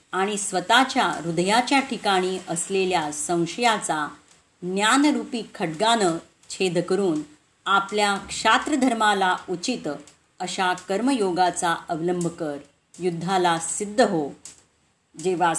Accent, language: native, Marathi